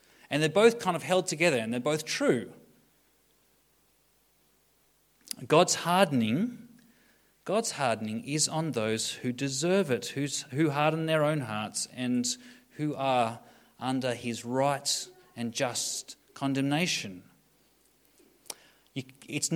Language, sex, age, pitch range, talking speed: English, male, 30-49, 120-175 Hz, 115 wpm